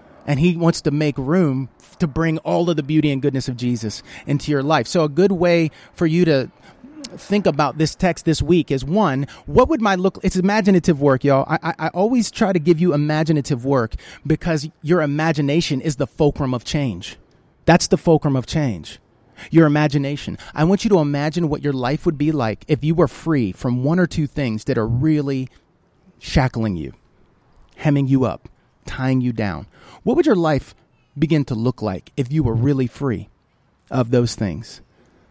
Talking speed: 190 wpm